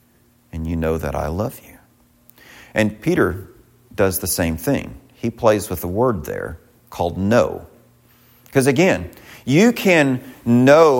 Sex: male